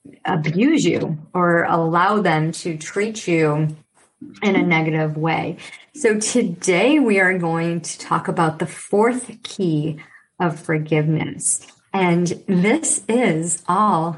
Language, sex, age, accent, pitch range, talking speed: English, male, 40-59, American, 160-200 Hz, 125 wpm